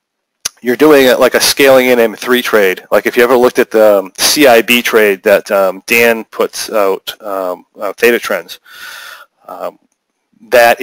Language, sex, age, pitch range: English, male, 30-49, 105-120 Hz